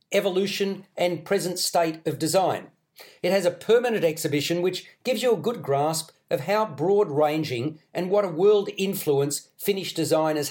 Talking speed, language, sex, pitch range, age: 160 wpm, English, male, 155-190 Hz, 40-59